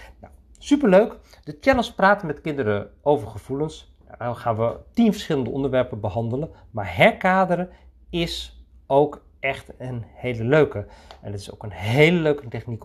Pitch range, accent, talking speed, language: 100-165 Hz, Dutch, 145 wpm, Dutch